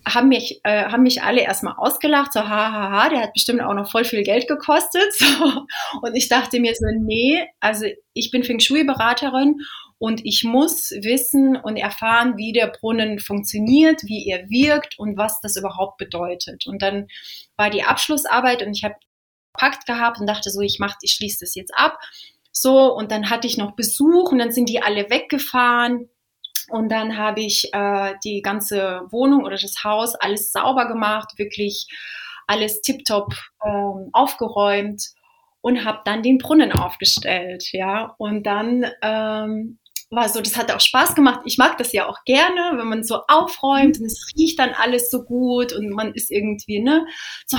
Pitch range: 205-260 Hz